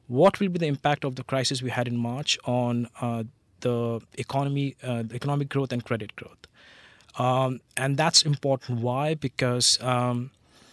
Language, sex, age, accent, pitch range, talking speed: English, male, 20-39, Indian, 120-140 Hz, 170 wpm